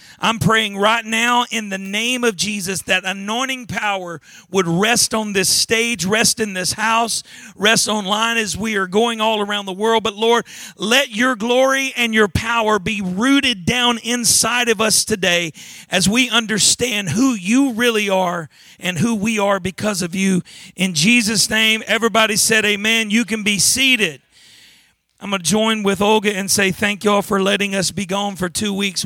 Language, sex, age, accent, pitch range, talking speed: English, male, 40-59, American, 185-225 Hz, 185 wpm